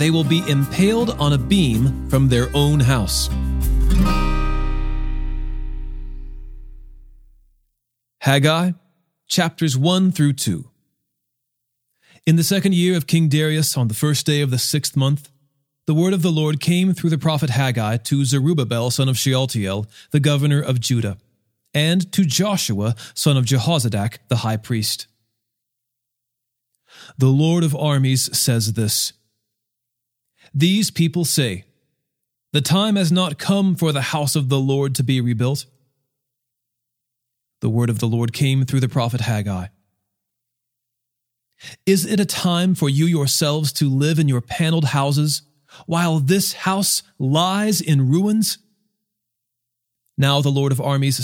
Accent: American